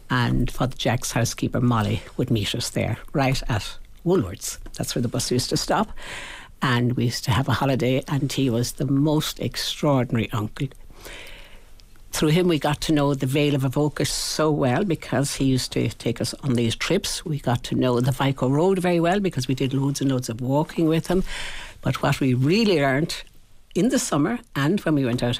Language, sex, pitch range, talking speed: English, female, 120-160 Hz, 205 wpm